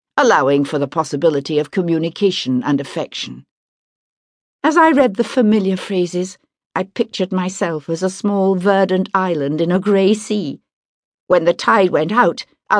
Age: 60-79